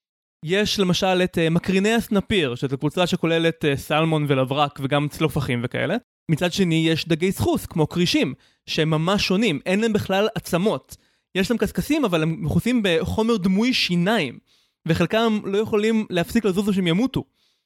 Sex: male